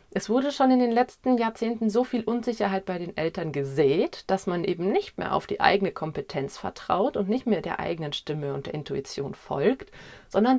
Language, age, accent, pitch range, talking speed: German, 30-49, German, 170-220 Hz, 200 wpm